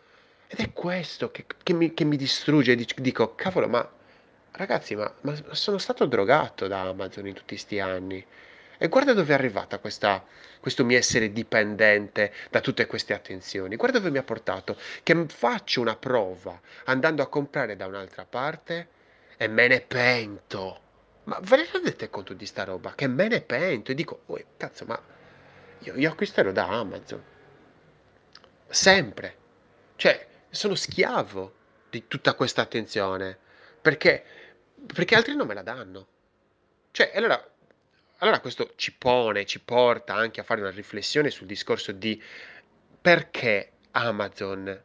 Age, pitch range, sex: 30-49, 100-150 Hz, male